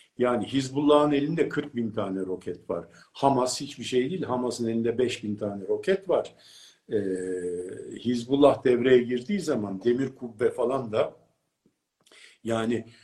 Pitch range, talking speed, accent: 105-150 Hz, 130 wpm, native